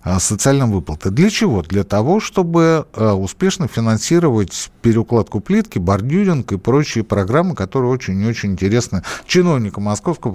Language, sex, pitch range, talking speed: Russian, male, 95-145 Hz, 120 wpm